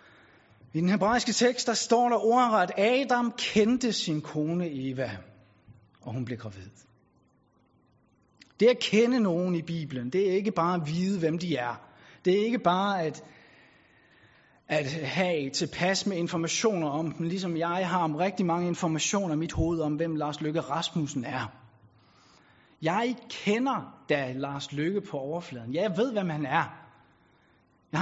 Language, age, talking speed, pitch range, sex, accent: Danish, 30-49, 160 wpm, 140-205 Hz, male, native